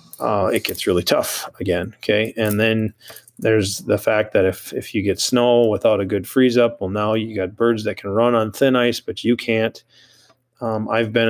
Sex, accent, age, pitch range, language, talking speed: male, American, 30-49, 105-115 Hz, English, 210 wpm